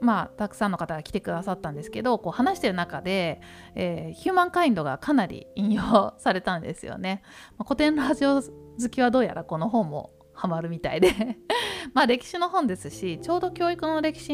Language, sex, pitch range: Japanese, female, 155-230 Hz